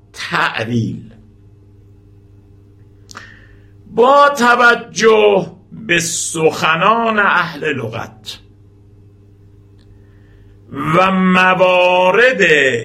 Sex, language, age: male, Persian, 60-79